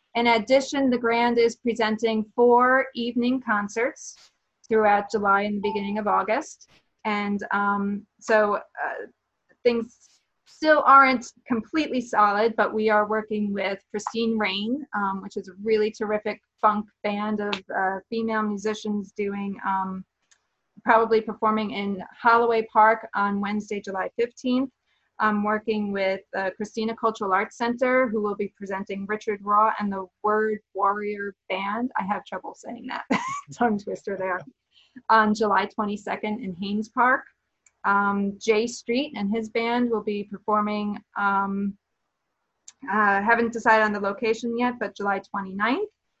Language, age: English, 30-49